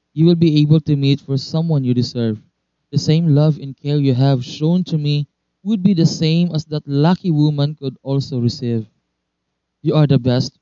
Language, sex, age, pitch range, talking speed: Filipino, male, 20-39, 120-155 Hz, 200 wpm